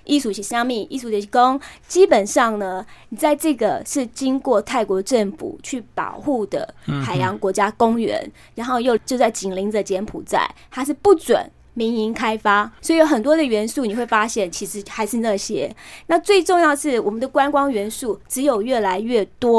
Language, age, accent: Chinese, 20-39, American